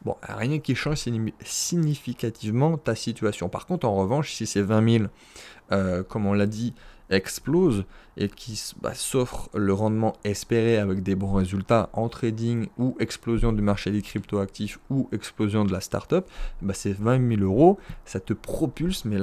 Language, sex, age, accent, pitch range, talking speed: French, male, 20-39, French, 100-135 Hz, 170 wpm